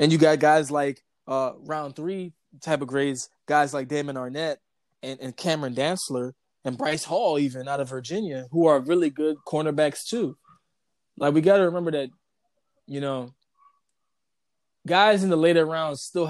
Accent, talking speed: American, 170 wpm